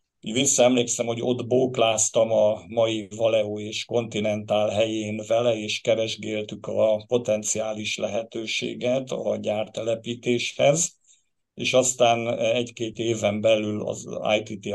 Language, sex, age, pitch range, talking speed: Hungarian, male, 50-69, 105-120 Hz, 100 wpm